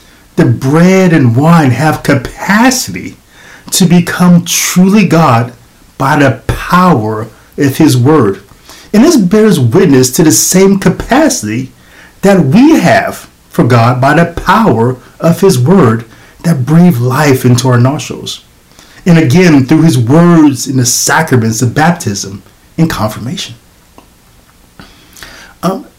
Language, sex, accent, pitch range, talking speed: English, male, American, 125-170 Hz, 125 wpm